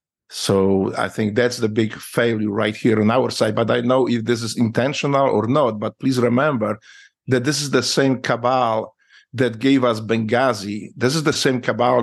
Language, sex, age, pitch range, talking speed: English, male, 50-69, 110-135 Hz, 195 wpm